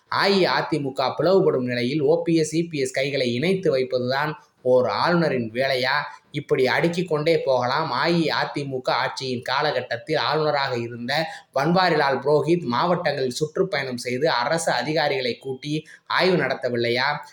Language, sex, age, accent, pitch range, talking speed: Tamil, male, 20-39, native, 125-160 Hz, 100 wpm